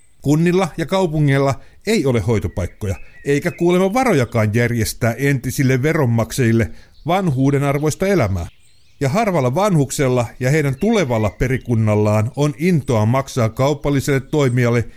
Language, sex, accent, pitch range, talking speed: Finnish, male, native, 110-160 Hz, 110 wpm